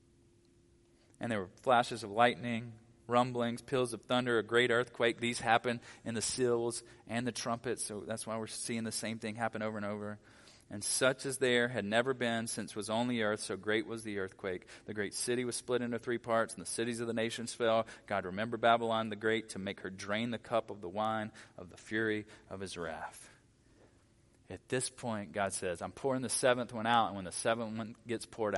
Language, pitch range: English, 105-120 Hz